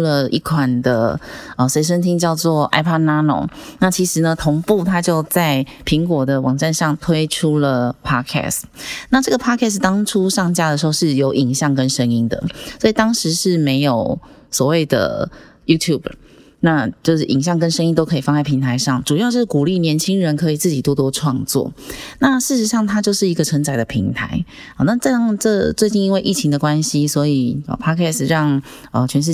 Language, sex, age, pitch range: Chinese, female, 30-49, 140-180 Hz